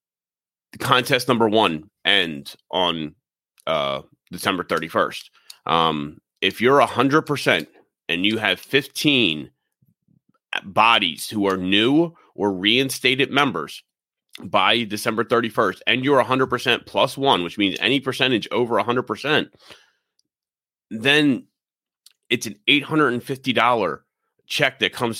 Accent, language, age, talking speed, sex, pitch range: American, English, 30-49, 105 wpm, male, 90-125 Hz